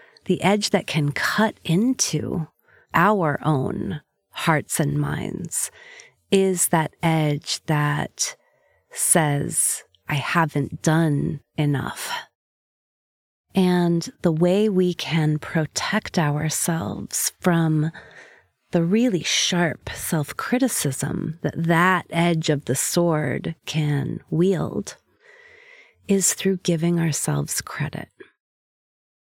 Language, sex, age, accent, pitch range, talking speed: English, female, 30-49, American, 150-190 Hz, 90 wpm